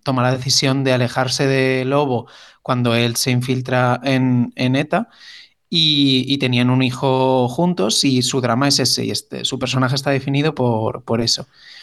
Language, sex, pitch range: Spanish, male, 130-155 Hz